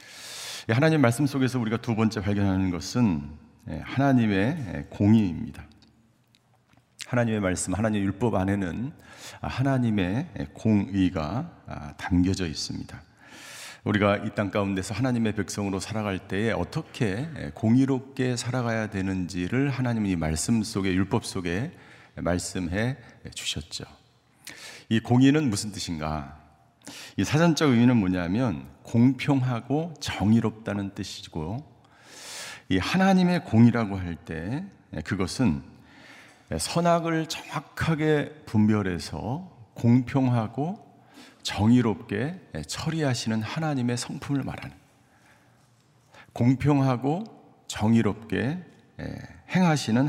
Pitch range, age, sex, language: 100-135 Hz, 50-69, male, Korean